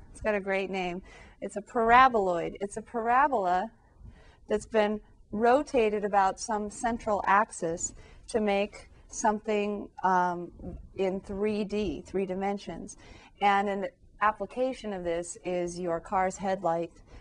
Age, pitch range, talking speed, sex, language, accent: 40-59, 175-215 Hz, 120 wpm, female, English, American